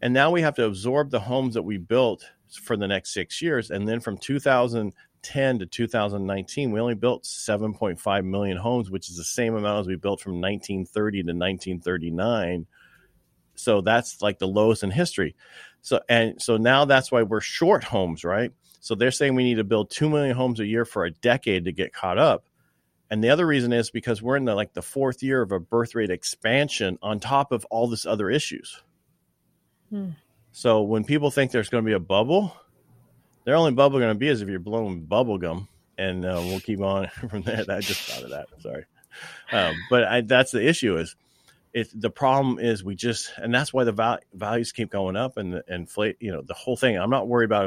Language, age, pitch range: English, 40-59, 100-125 Hz